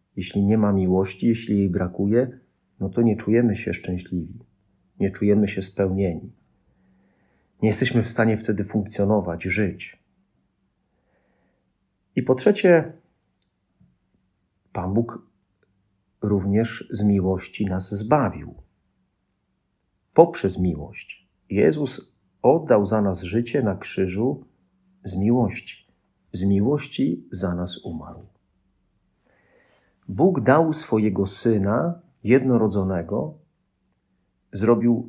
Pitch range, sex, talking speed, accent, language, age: 95-120 Hz, male, 95 wpm, native, Polish, 40-59